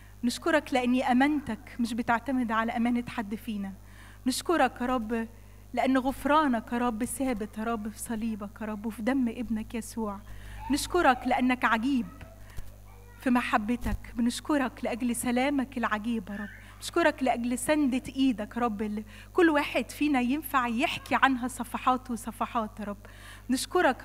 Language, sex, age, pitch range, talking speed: Arabic, female, 20-39, 220-265 Hz, 135 wpm